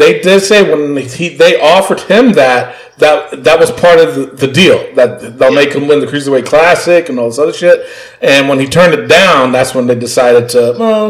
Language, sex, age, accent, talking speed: English, male, 40-59, American, 220 wpm